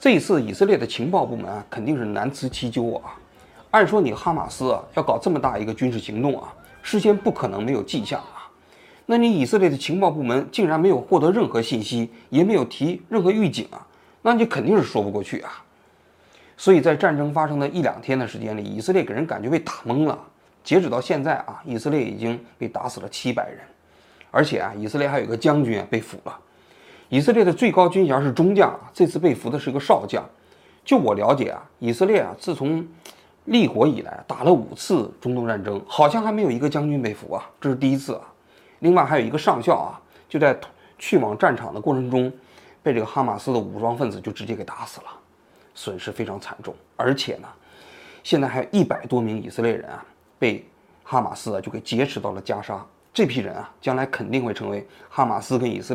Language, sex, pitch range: Chinese, male, 115-170 Hz